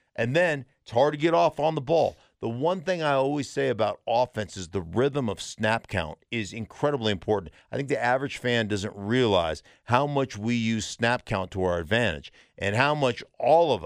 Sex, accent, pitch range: male, American, 105-140 Hz